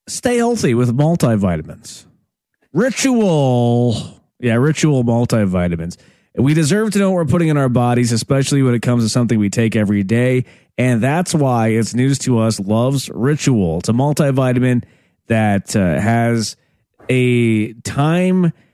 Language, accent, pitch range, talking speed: English, American, 110-140 Hz, 145 wpm